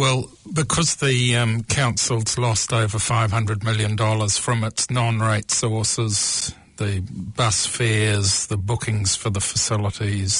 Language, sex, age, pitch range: English, male, 50-69, 105-125 Hz